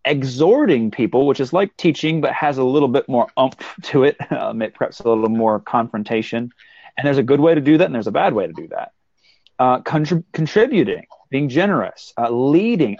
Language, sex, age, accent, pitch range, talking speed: English, male, 30-49, American, 110-150 Hz, 210 wpm